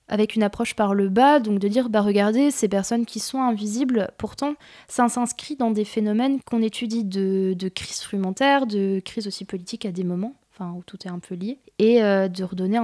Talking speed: 215 wpm